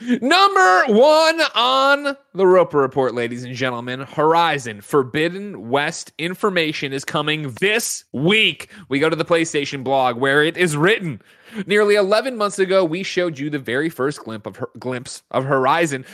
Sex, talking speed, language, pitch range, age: male, 160 wpm, English, 135-195 Hz, 30-49